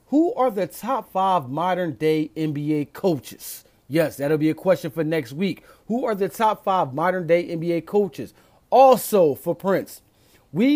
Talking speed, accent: 155 wpm, American